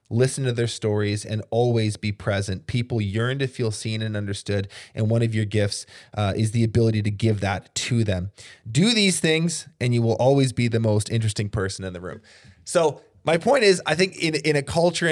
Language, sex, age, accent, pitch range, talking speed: English, male, 20-39, American, 105-125 Hz, 215 wpm